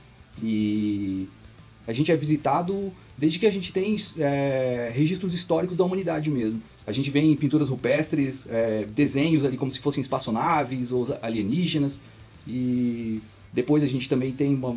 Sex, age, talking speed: male, 30-49, 155 wpm